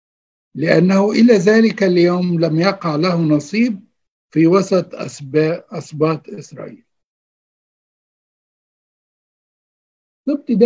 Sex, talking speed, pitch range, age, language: male, 80 wpm, 165-215 Hz, 60-79, Arabic